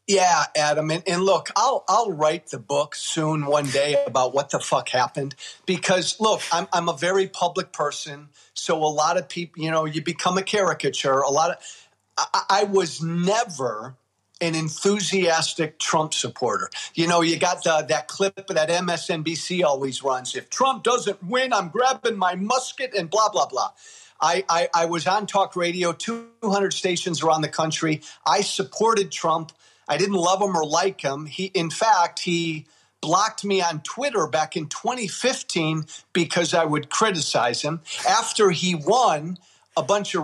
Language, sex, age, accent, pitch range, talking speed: English, male, 40-59, American, 155-205 Hz, 170 wpm